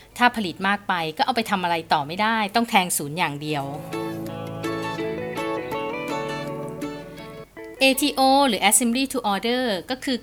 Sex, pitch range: female, 165-235 Hz